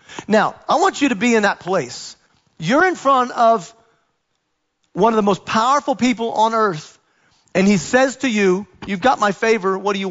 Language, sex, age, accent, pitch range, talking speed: English, male, 40-59, American, 160-210 Hz, 195 wpm